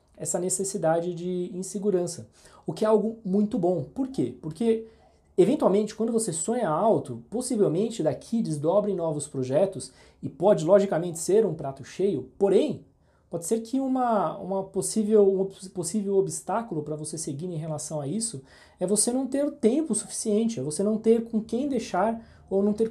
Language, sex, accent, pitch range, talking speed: Portuguese, male, Brazilian, 165-215 Hz, 155 wpm